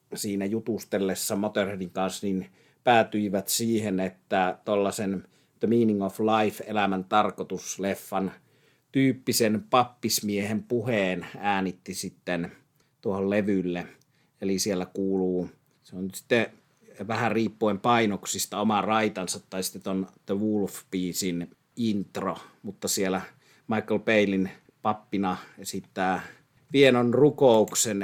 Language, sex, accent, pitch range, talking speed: Finnish, male, native, 95-115 Hz, 100 wpm